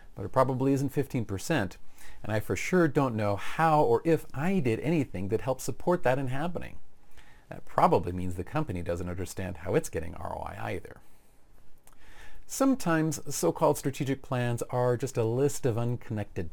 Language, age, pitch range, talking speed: English, 40-59, 100-150 Hz, 165 wpm